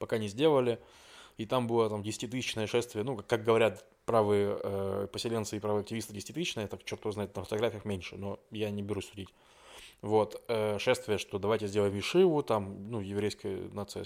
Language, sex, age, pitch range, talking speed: Russian, male, 20-39, 105-120 Hz, 180 wpm